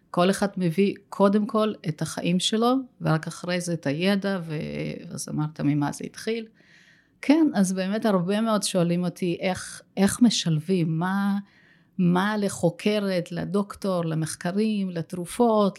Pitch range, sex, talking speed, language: 160-200 Hz, female, 130 wpm, Hebrew